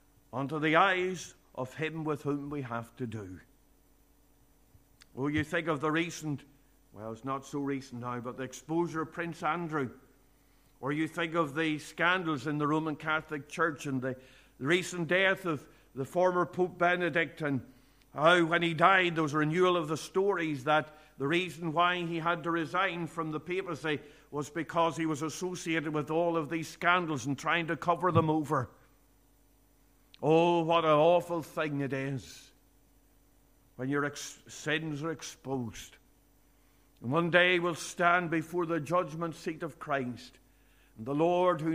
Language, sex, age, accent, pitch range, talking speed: English, male, 50-69, Irish, 135-170 Hz, 170 wpm